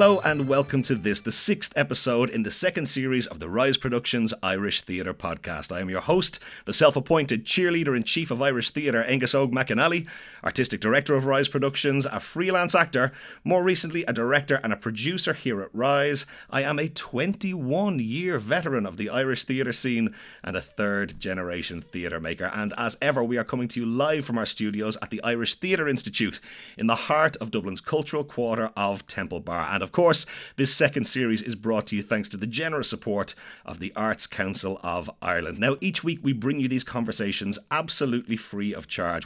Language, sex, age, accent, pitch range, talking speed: English, male, 30-49, Irish, 105-140 Hz, 195 wpm